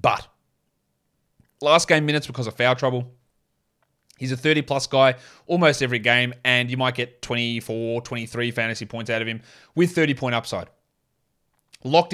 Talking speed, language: 160 wpm, English